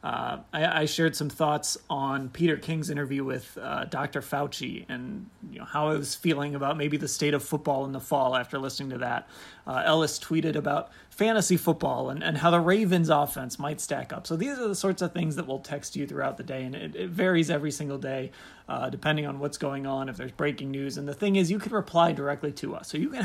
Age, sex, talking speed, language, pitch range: 30-49, male, 235 wpm, English, 140-170 Hz